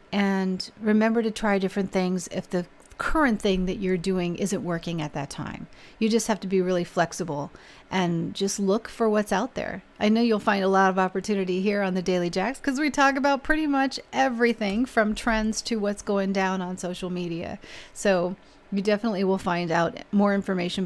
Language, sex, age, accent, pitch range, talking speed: English, female, 40-59, American, 185-225 Hz, 200 wpm